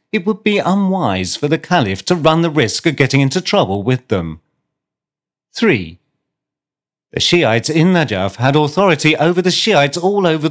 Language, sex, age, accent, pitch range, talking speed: English, male, 40-59, British, 120-175 Hz, 165 wpm